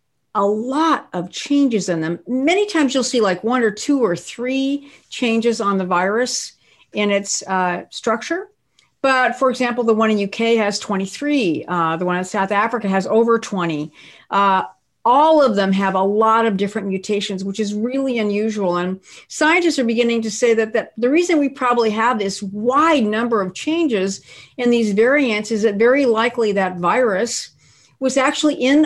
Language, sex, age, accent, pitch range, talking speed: English, female, 50-69, American, 205-270 Hz, 180 wpm